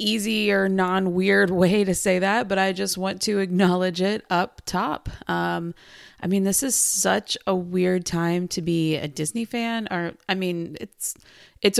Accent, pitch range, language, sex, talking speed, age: American, 185-240 Hz, English, female, 185 wpm, 20-39